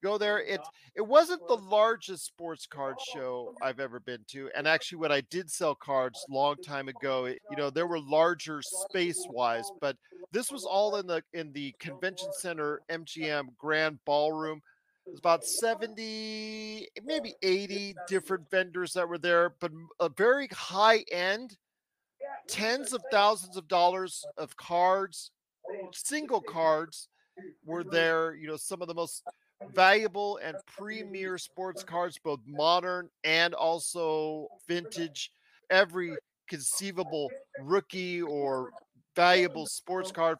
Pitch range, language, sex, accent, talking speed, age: 155-195 Hz, English, male, American, 145 wpm, 40-59